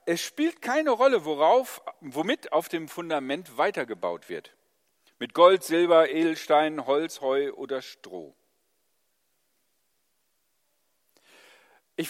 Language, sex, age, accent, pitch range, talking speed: German, male, 50-69, German, 145-190 Hz, 100 wpm